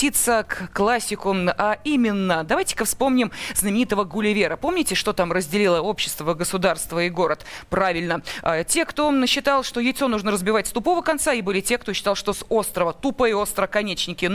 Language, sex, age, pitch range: Russian, female, 20-39, 195-270 Hz